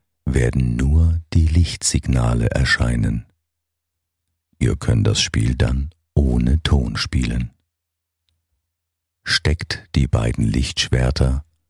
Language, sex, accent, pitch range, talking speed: German, male, German, 65-85 Hz, 85 wpm